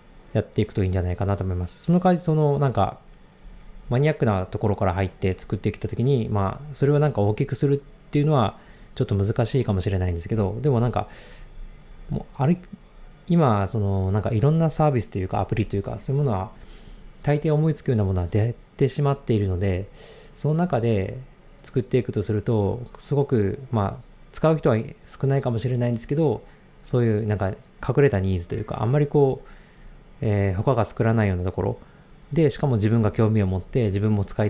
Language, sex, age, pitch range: Japanese, male, 20-39, 100-145 Hz